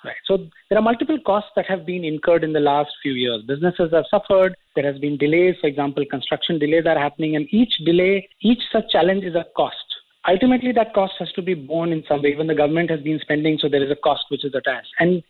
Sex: male